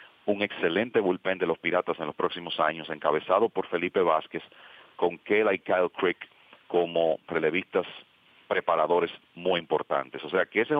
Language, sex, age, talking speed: English, male, 40-59, 160 wpm